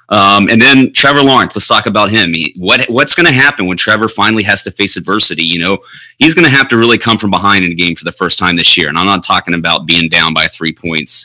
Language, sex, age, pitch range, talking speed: English, male, 30-49, 95-115 Hz, 275 wpm